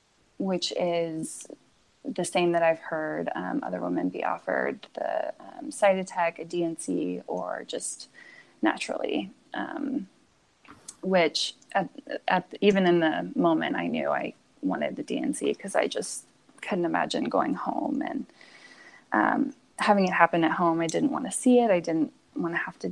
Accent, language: American, English